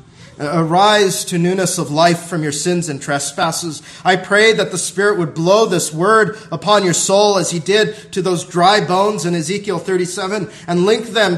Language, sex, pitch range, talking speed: English, male, 175-220 Hz, 185 wpm